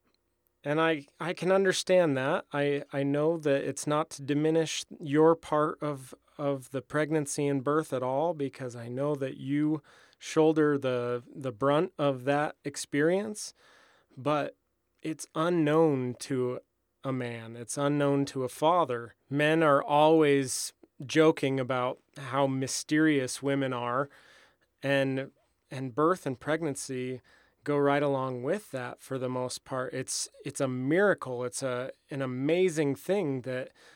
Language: English